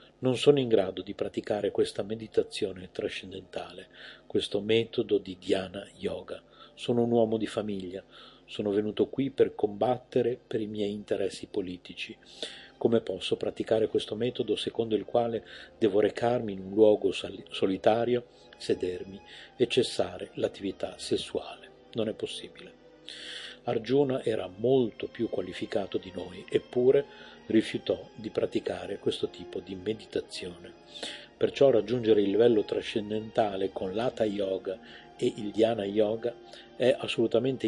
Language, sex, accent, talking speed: Italian, male, native, 125 wpm